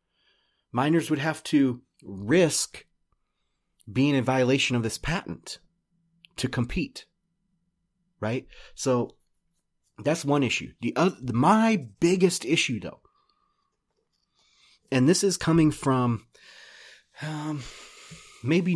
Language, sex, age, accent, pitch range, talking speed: English, male, 30-49, American, 115-170 Hz, 100 wpm